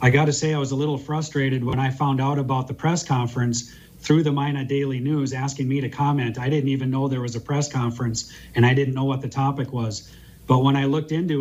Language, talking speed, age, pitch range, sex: English, 245 wpm, 40-59, 130-150 Hz, male